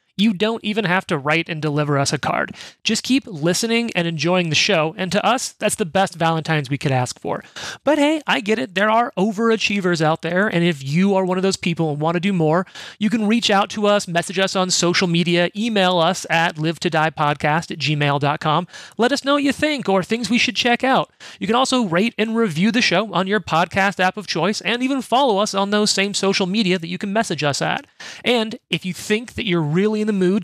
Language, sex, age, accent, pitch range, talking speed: English, male, 30-49, American, 170-225 Hz, 235 wpm